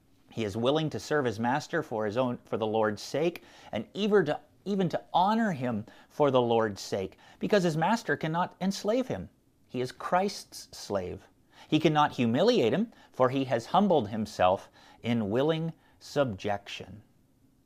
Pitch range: 120-175 Hz